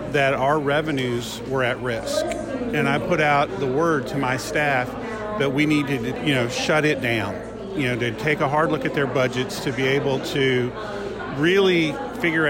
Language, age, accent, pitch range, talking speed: English, 40-59, American, 140-175 Hz, 190 wpm